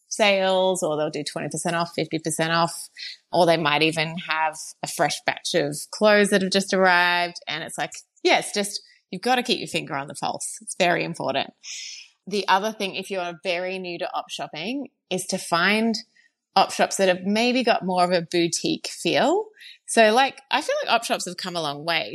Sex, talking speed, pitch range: female, 205 wpm, 170-215 Hz